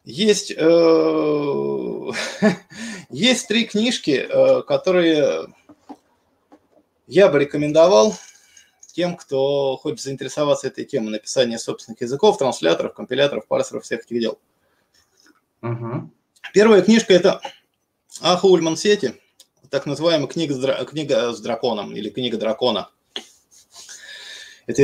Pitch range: 135-190 Hz